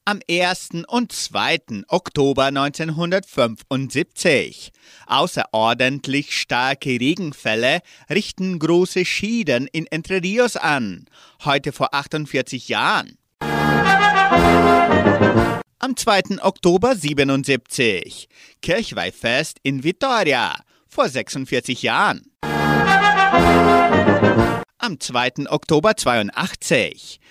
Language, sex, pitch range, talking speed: German, male, 120-190 Hz, 75 wpm